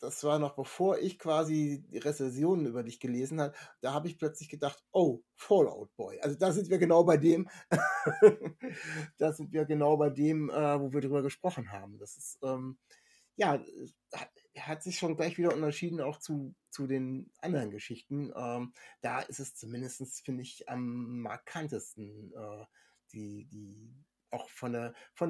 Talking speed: 170 wpm